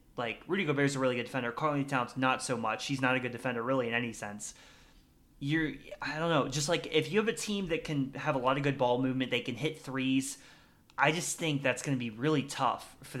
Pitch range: 120-145 Hz